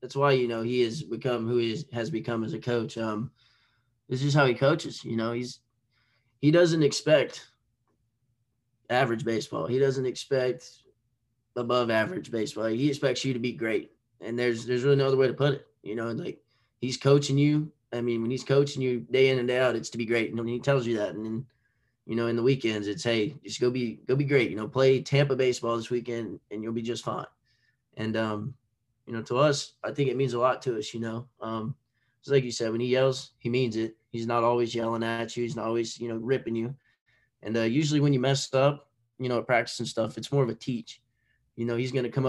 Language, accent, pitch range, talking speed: English, American, 115-135 Hz, 240 wpm